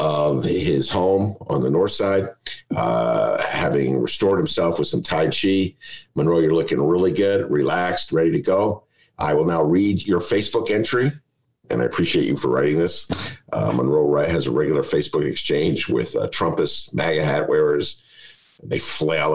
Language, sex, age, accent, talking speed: English, male, 50-69, American, 165 wpm